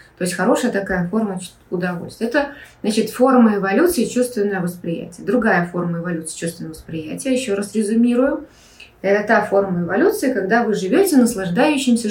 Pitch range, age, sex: 185-240 Hz, 20-39, female